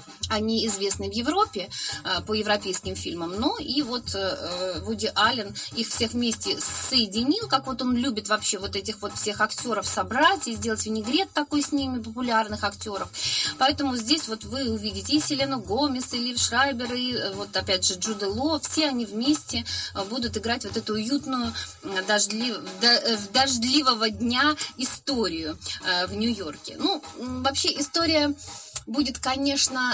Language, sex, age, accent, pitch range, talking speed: Russian, female, 20-39, native, 215-285 Hz, 140 wpm